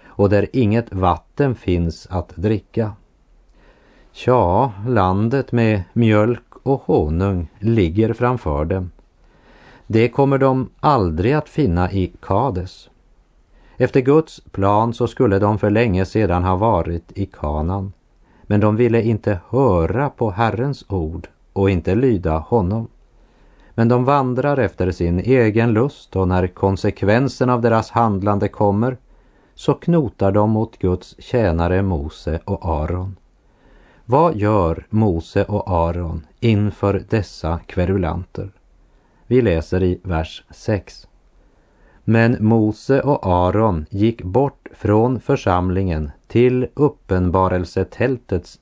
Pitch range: 90-120 Hz